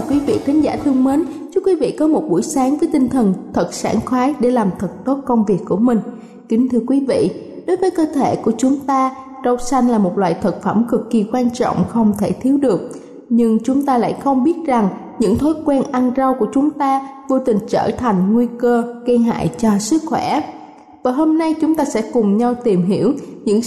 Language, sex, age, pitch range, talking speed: Vietnamese, female, 20-39, 225-275 Hz, 230 wpm